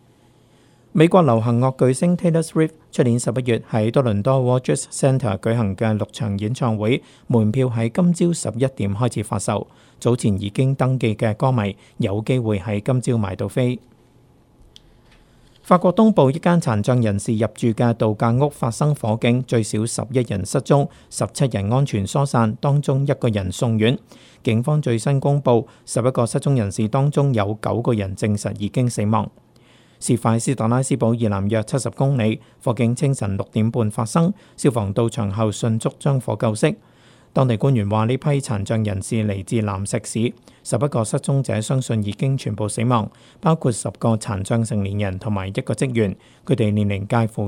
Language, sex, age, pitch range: Chinese, male, 50-69, 110-135 Hz